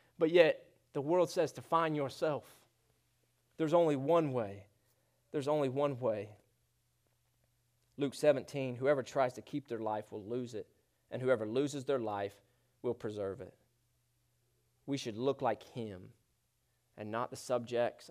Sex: male